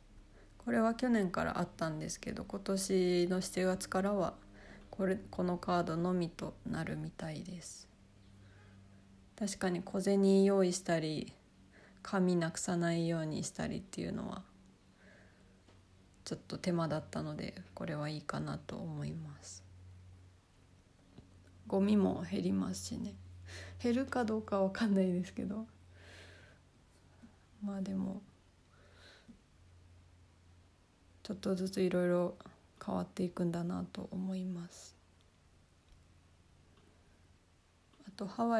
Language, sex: Japanese, female